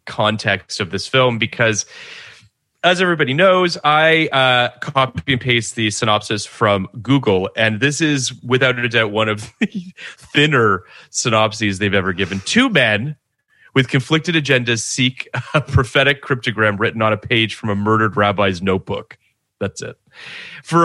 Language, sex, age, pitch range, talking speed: English, male, 30-49, 105-140 Hz, 150 wpm